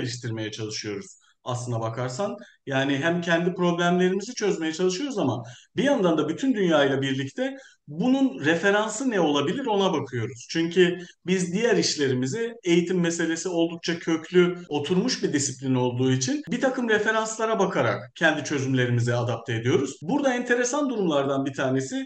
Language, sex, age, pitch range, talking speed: Turkish, male, 50-69, 140-210 Hz, 135 wpm